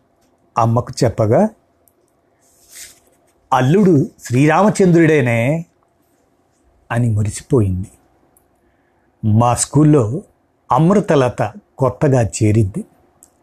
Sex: male